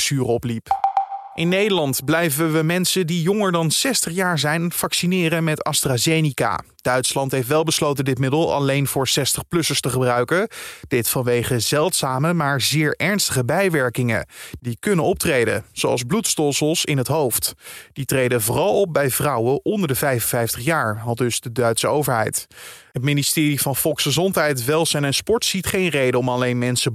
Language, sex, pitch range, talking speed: Dutch, male, 130-180 Hz, 150 wpm